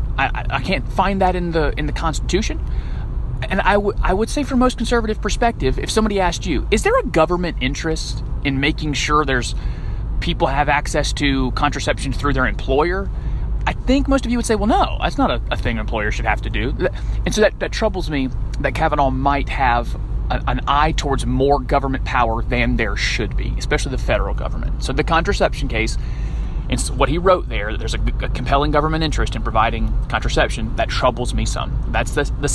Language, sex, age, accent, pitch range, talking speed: English, male, 30-49, American, 125-175 Hz, 210 wpm